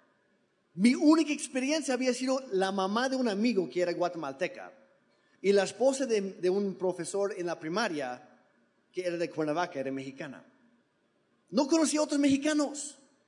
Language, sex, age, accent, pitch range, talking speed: Spanish, male, 30-49, Mexican, 175-255 Hz, 155 wpm